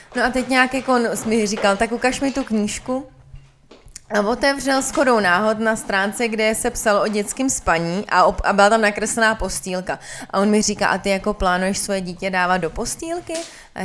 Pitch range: 195-235 Hz